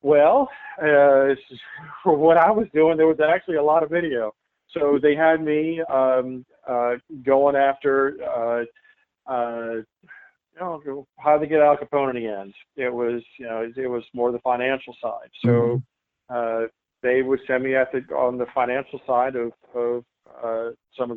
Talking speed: 170 wpm